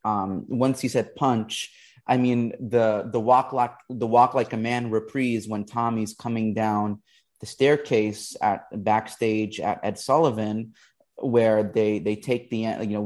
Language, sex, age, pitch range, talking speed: English, male, 30-49, 120-160 Hz, 160 wpm